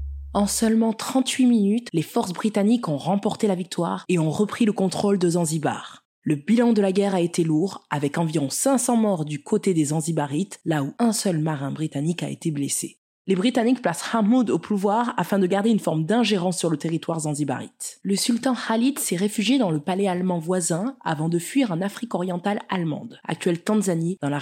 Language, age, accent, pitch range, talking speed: French, 20-39, French, 160-210 Hz, 195 wpm